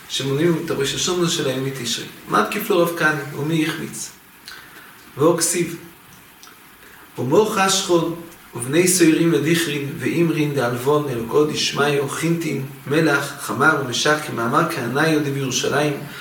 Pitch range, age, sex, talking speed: 150-185 Hz, 40-59, male, 110 wpm